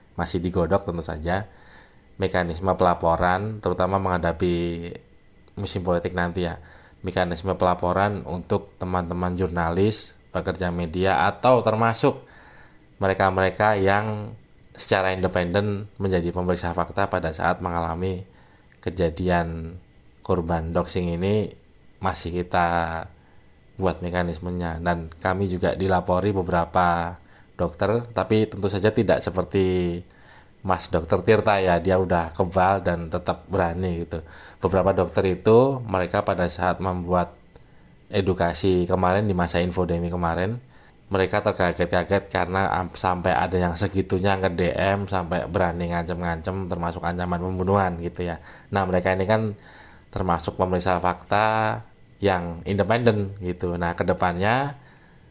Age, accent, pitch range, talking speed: 20-39, native, 85-100 Hz, 115 wpm